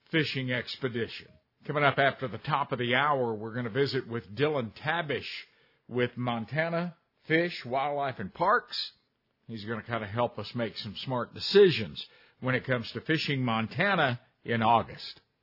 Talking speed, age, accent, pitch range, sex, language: 165 wpm, 50-69, American, 120-165 Hz, male, English